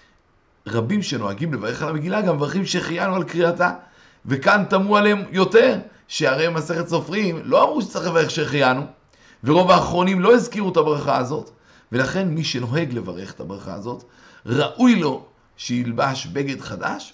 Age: 50-69